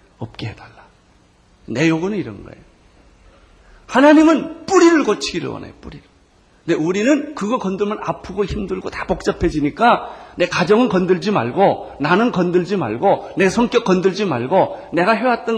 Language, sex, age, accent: Korean, male, 40-59, native